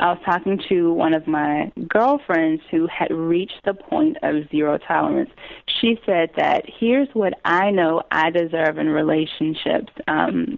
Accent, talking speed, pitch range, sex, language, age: American, 160 wpm, 165-225 Hz, female, English, 30-49